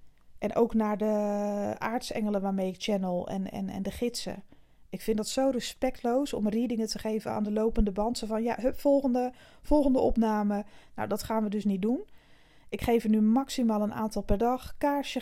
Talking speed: 195 wpm